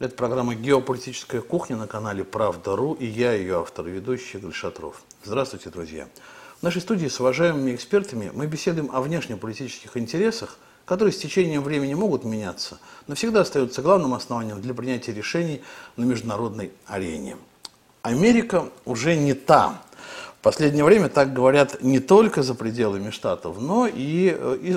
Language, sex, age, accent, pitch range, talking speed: Russian, male, 50-69, native, 125-185 Hz, 145 wpm